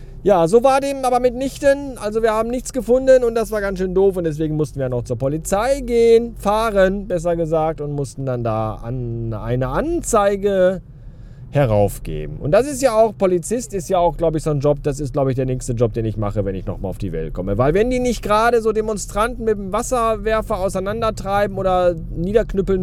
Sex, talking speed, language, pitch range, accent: male, 210 wpm, German, 130-210 Hz, German